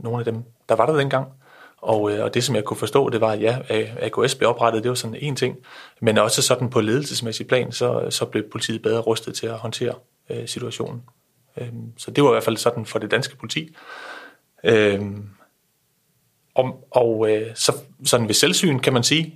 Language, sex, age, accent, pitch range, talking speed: Danish, male, 30-49, native, 110-130 Hz, 205 wpm